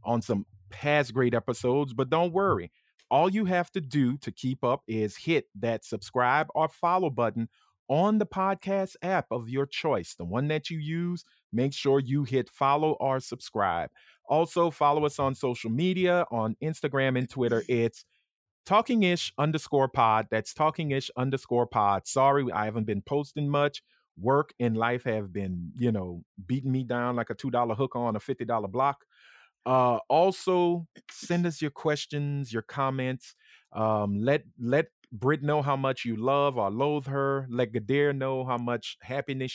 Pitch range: 120-150 Hz